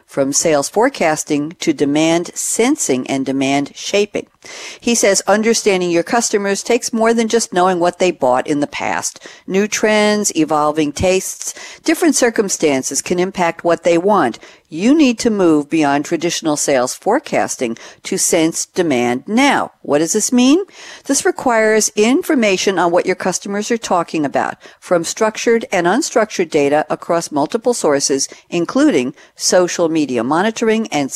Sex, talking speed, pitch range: female, 145 wpm, 150-225 Hz